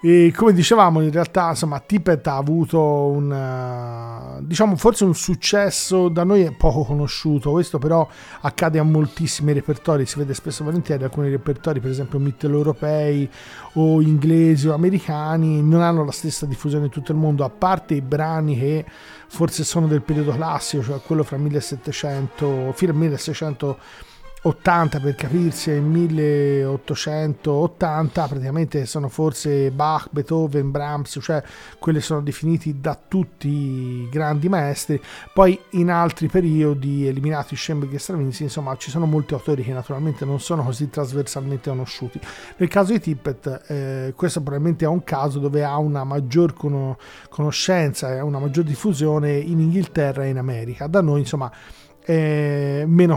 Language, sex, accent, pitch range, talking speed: Italian, male, native, 140-165 Hz, 150 wpm